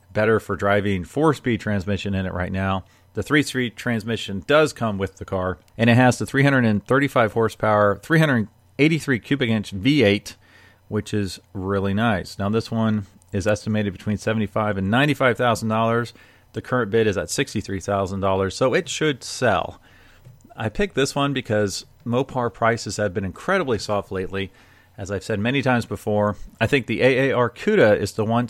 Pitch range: 100-120 Hz